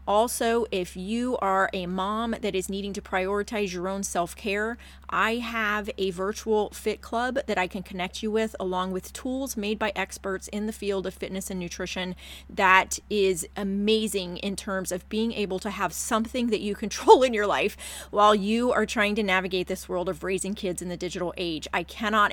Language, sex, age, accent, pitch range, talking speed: English, female, 30-49, American, 185-210 Hz, 195 wpm